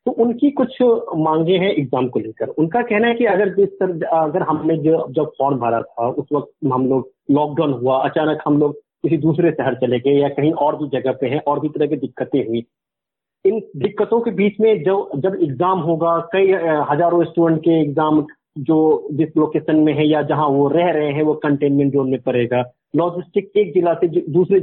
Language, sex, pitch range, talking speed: Hindi, male, 145-185 Hz, 205 wpm